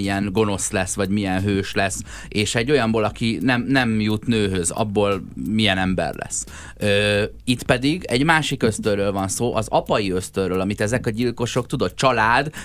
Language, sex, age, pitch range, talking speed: Hungarian, male, 30-49, 95-120 Hz, 175 wpm